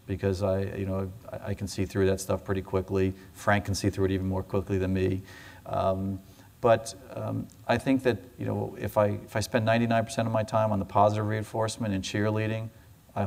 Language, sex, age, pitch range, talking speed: English, male, 40-59, 95-110 Hz, 210 wpm